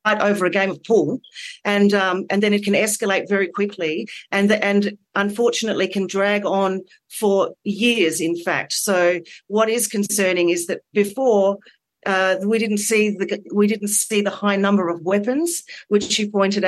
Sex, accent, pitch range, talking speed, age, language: female, Australian, 185-210 Hz, 170 wpm, 40-59, English